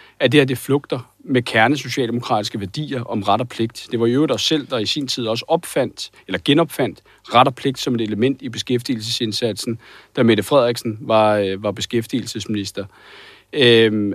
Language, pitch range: Danish, 120-165 Hz